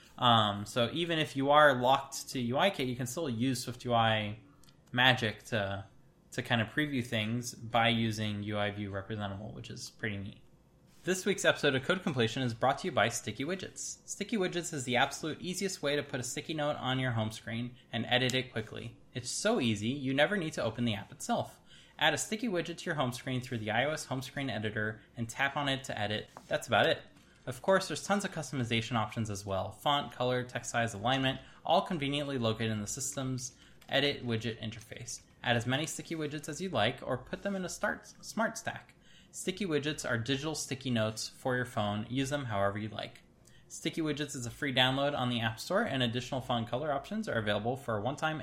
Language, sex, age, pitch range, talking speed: English, male, 10-29, 115-150 Hz, 210 wpm